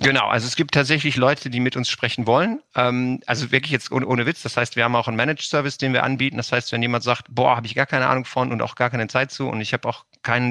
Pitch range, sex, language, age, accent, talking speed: 110-130 Hz, male, German, 50-69, German, 295 wpm